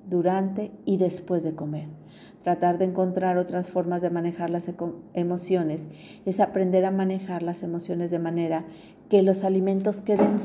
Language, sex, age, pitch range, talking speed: Spanish, female, 40-59, 170-195 Hz, 155 wpm